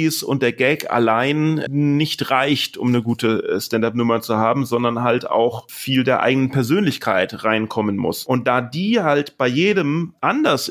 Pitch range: 120-155 Hz